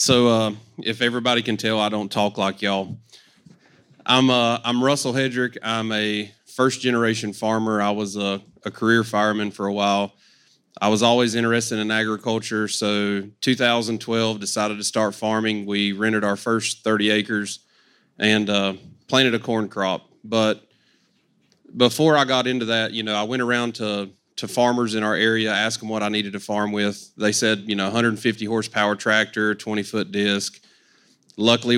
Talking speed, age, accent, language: 170 wpm, 30-49, American, English